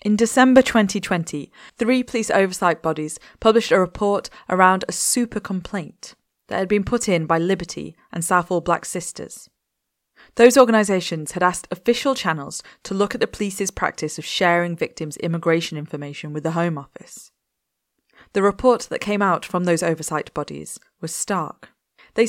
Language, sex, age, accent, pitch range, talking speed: English, female, 20-39, British, 165-210 Hz, 155 wpm